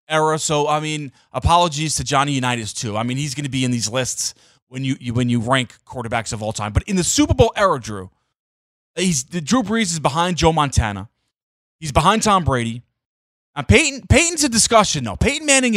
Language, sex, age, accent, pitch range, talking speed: English, male, 30-49, American, 130-200 Hz, 205 wpm